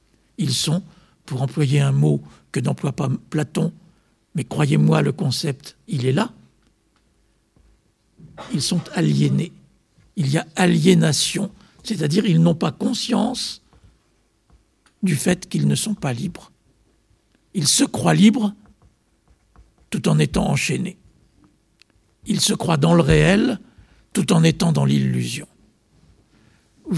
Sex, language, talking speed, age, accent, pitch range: male, French, 125 wpm, 60-79, French, 155-200 Hz